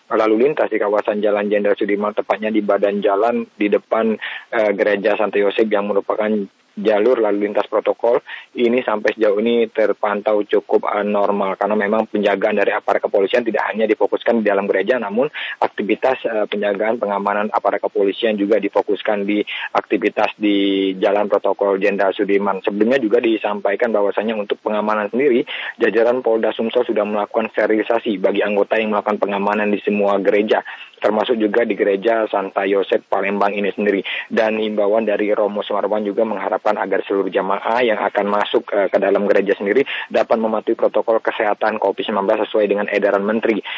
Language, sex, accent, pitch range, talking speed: Indonesian, male, native, 100-110 Hz, 155 wpm